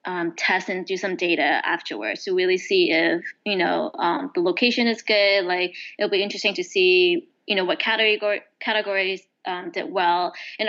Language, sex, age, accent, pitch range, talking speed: English, female, 20-39, American, 185-240 Hz, 185 wpm